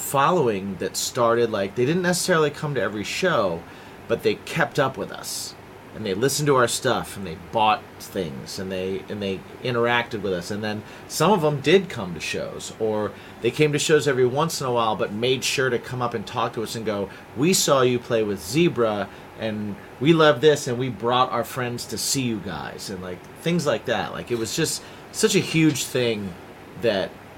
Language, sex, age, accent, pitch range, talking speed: English, male, 30-49, American, 100-135 Hz, 215 wpm